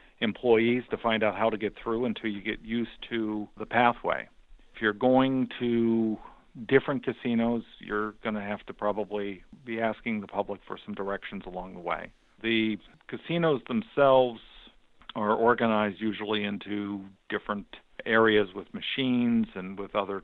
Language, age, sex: English, 50-69, male